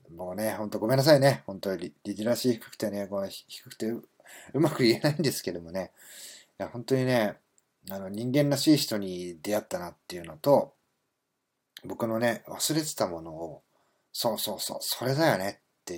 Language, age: Japanese, 40-59